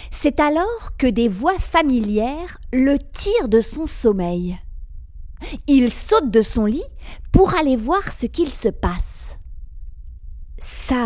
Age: 40-59